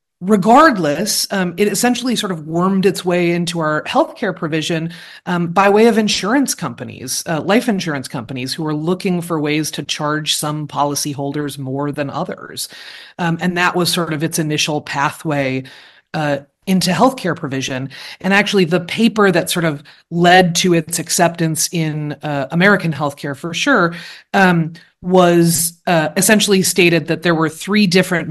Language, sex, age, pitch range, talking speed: English, female, 30-49, 150-190 Hz, 160 wpm